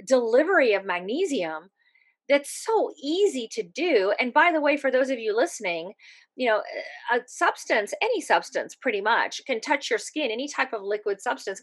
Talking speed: 170 wpm